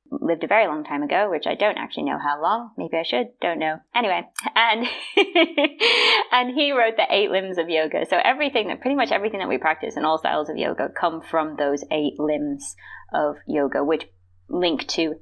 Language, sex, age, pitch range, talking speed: English, female, 30-49, 150-220 Hz, 205 wpm